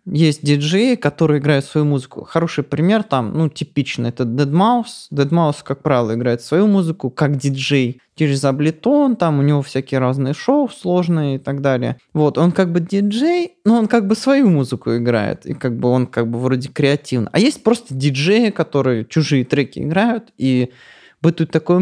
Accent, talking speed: native, 180 wpm